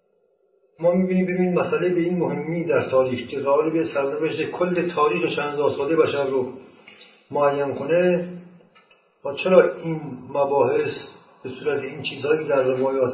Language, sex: Persian, male